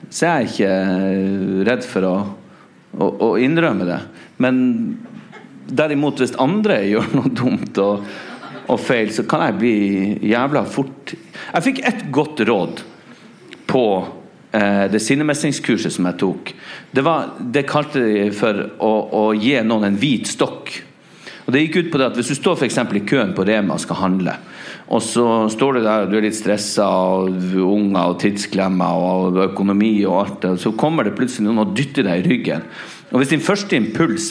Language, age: English, 40-59